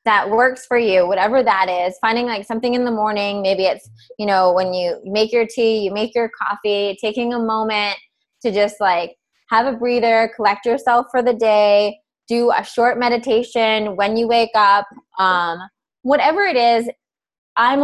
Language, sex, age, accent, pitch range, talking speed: English, female, 20-39, American, 210-255 Hz, 180 wpm